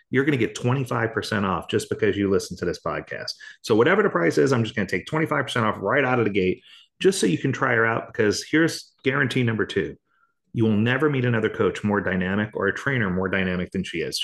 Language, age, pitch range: English, 30-49, 100-135 Hz